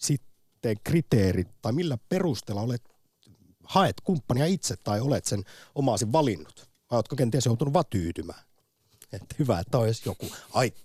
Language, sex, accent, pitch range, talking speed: Finnish, male, native, 95-130 Hz, 135 wpm